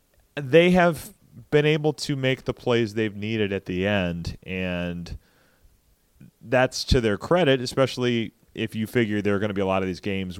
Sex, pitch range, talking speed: male, 100-135 Hz, 185 wpm